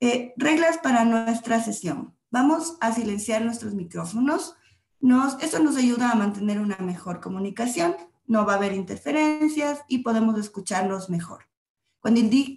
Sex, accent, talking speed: female, Mexican, 145 wpm